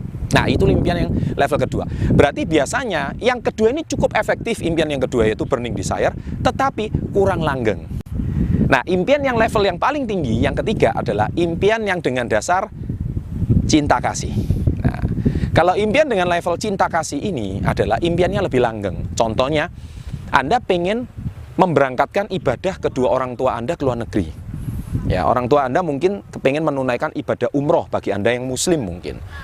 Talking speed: 155 wpm